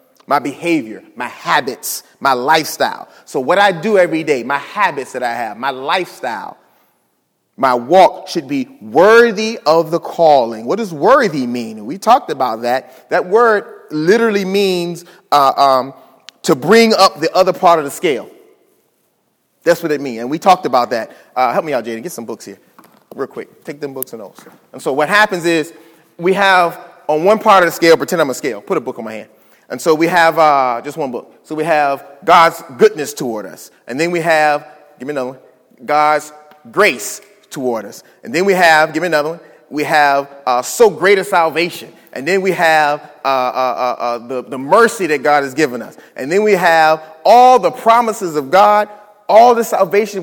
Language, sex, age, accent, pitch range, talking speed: English, male, 30-49, American, 150-210 Hz, 200 wpm